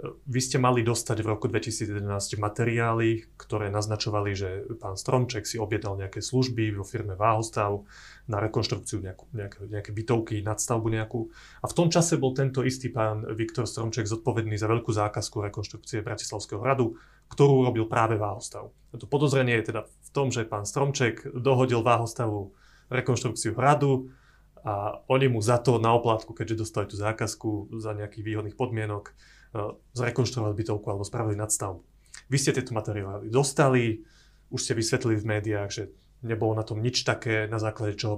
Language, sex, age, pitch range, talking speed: Slovak, male, 30-49, 110-130 Hz, 160 wpm